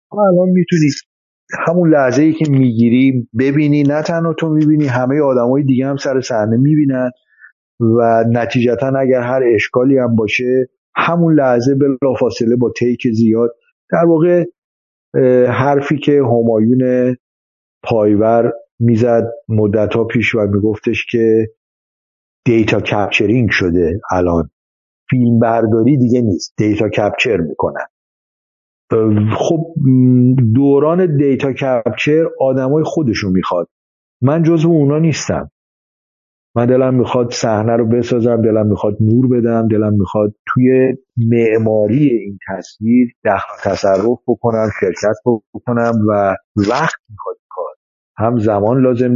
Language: Persian